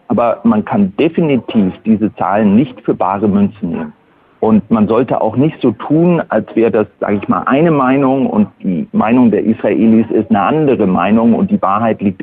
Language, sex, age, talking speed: German, male, 40-59, 190 wpm